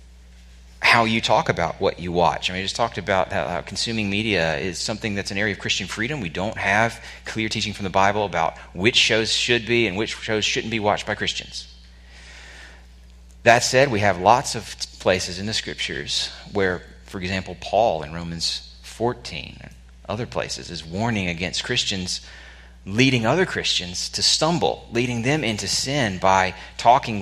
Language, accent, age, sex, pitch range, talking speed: English, American, 30-49, male, 80-110 Hz, 175 wpm